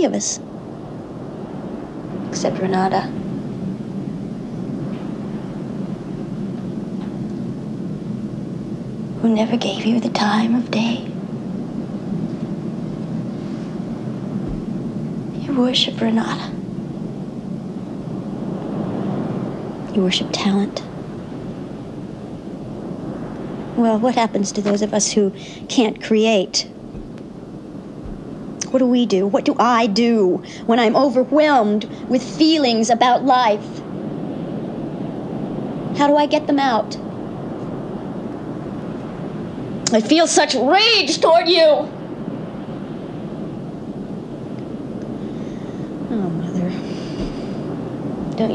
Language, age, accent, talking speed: Portuguese, 40-59, American, 70 wpm